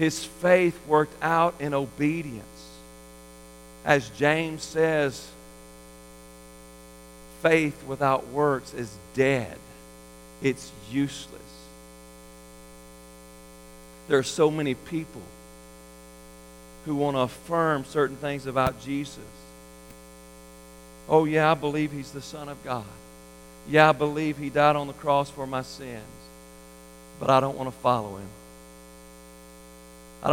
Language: English